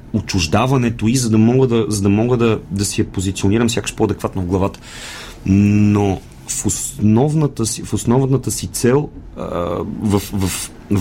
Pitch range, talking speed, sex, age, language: 100-120 Hz, 155 wpm, male, 30-49, Bulgarian